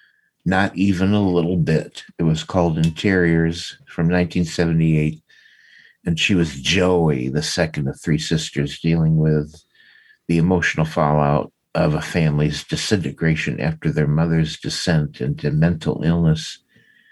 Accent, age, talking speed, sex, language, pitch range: American, 60-79, 125 wpm, male, English, 75-95 Hz